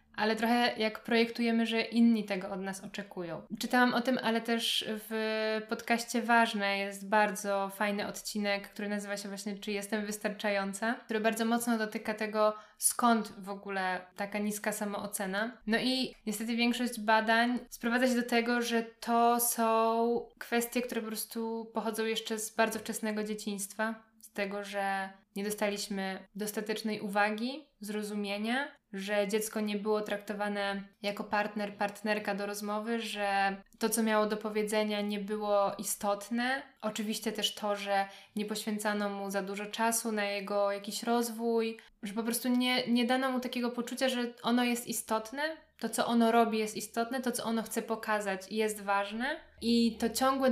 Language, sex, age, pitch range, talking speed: Polish, female, 10-29, 205-235 Hz, 155 wpm